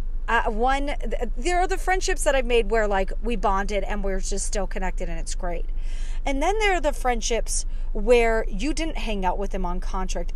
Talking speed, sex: 210 wpm, female